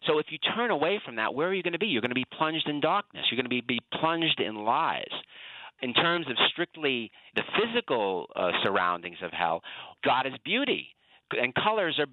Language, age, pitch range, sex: English, 50-69, 110-160 Hz, male